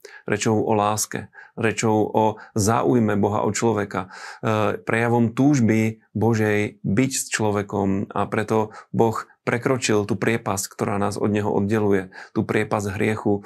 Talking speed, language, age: 130 wpm, Slovak, 30-49